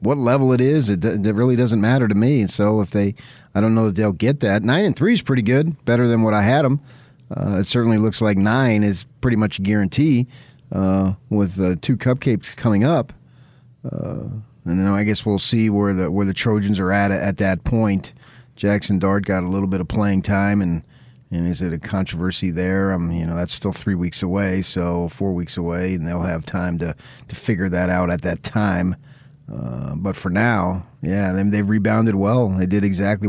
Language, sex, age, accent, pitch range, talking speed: English, male, 40-59, American, 90-110 Hz, 215 wpm